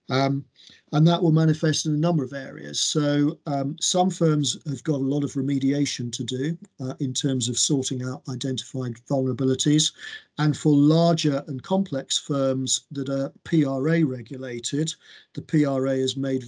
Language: English